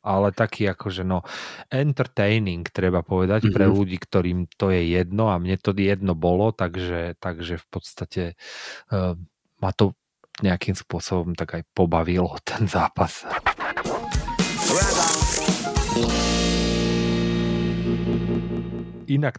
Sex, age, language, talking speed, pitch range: male, 40-59, Slovak, 100 wpm, 85-105 Hz